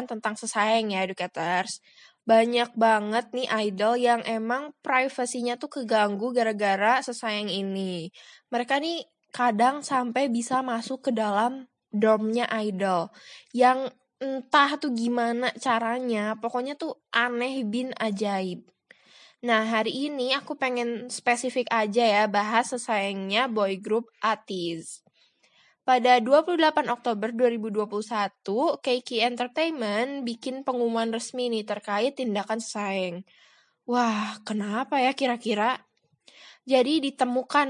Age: 10-29